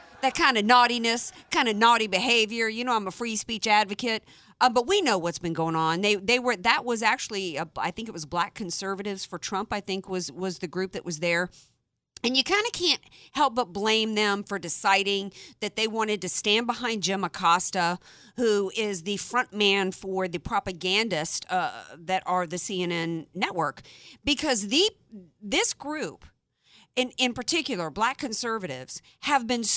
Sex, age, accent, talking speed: female, 50-69, American, 185 wpm